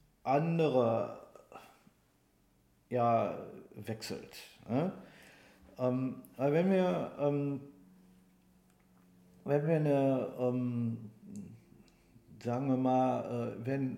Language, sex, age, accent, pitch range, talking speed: German, male, 50-69, German, 125-150 Hz, 75 wpm